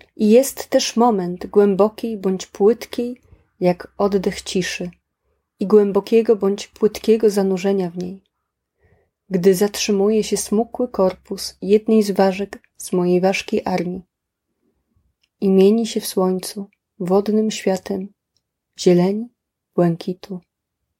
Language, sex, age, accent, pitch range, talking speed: Polish, female, 30-49, native, 185-220 Hz, 105 wpm